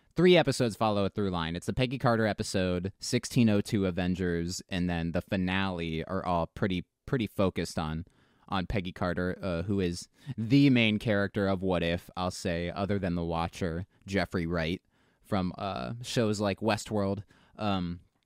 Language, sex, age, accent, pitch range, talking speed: English, male, 20-39, American, 90-115 Hz, 160 wpm